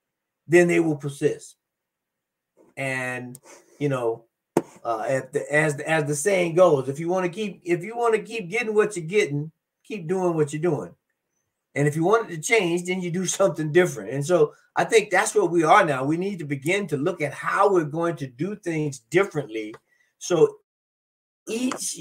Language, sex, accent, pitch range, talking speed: English, male, American, 140-185 Hz, 195 wpm